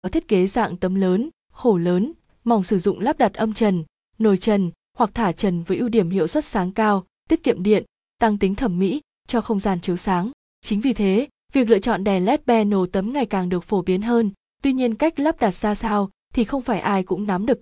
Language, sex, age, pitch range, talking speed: Vietnamese, female, 20-39, 190-240 Hz, 235 wpm